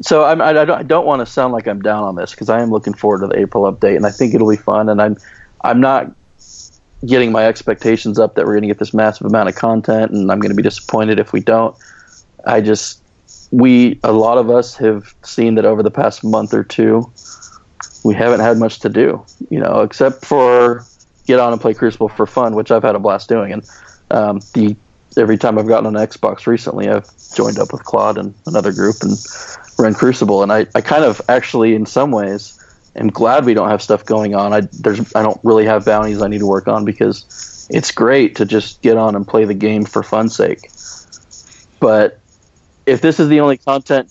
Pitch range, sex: 105-115 Hz, male